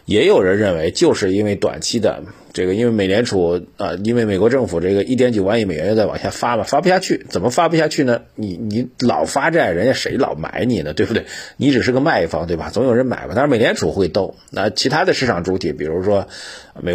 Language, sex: Chinese, male